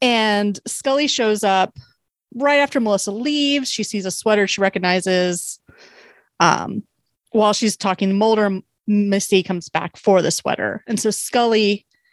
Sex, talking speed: female, 140 wpm